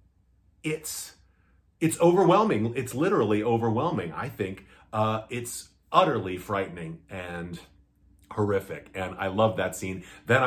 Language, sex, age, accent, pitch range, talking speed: English, male, 40-59, American, 95-120 Hz, 115 wpm